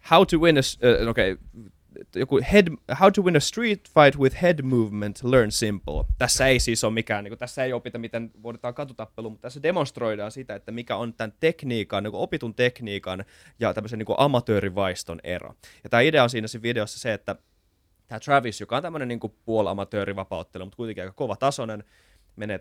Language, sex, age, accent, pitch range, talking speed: Finnish, male, 20-39, native, 100-125 Hz, 175 wpm